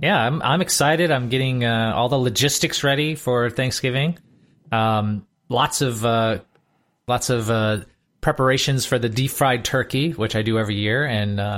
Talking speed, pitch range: 170 wpm, 110-135 Hz